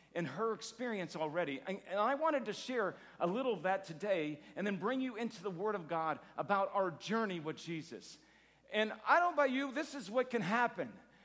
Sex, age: male, 50-69